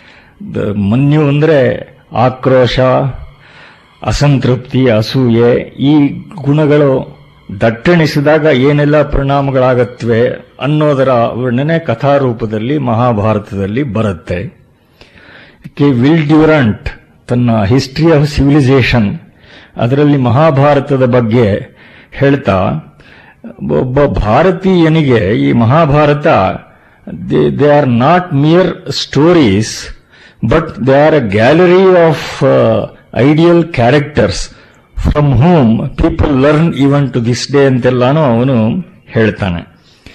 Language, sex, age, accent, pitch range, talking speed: Kannada, male, 50-69, native, 120-155 Hz, 85 wpm